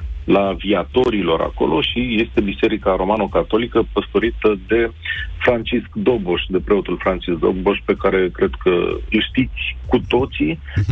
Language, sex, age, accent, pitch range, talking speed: Romanian, male, 40-59, native, 85-120 Hz, 125 wpm